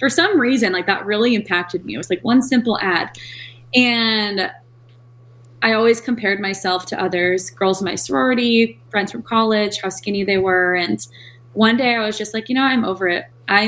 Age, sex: 20-39, female